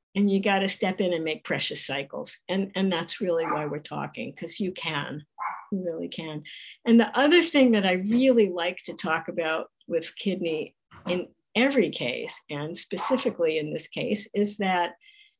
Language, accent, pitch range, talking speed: English, American, 175-235 Hz, 180 wpm